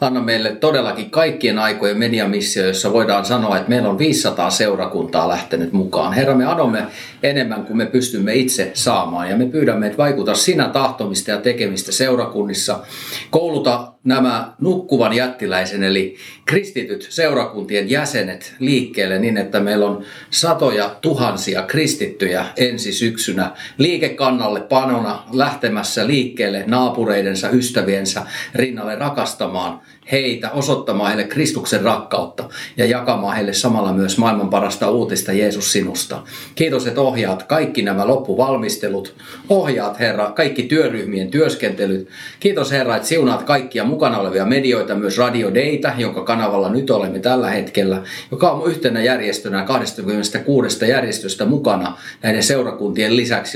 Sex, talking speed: male, 125 wpm